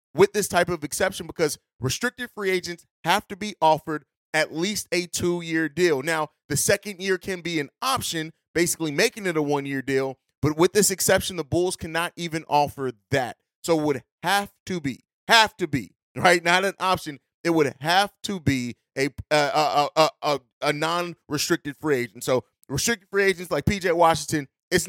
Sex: male